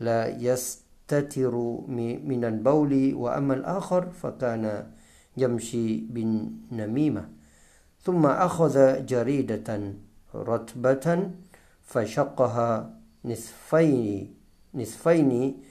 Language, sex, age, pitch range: Thai, male, 50-69, 90-130 Hz